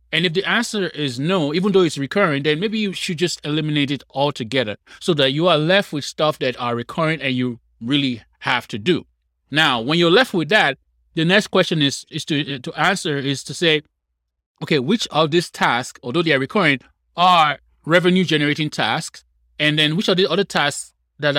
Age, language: 20-39, English